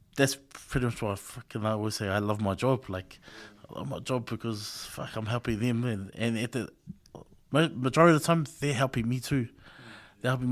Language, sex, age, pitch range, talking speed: English, male, 20-39, 120-165 Hz, 200 wpm